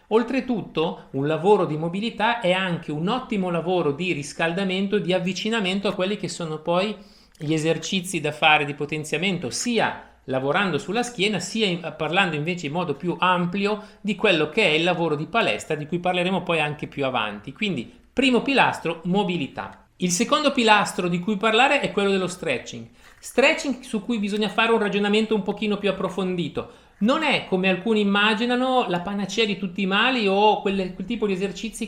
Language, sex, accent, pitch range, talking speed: Italian, male, native, 170-215 Hz, 175 wpm